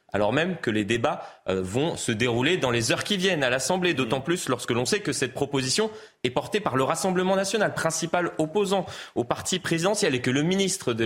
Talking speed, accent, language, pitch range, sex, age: 215 wpm, French, French, 110-170 Hz, male, 30-49